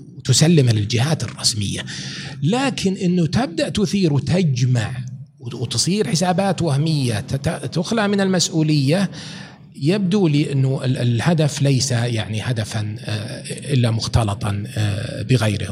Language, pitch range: Arabic, 115-150 Hz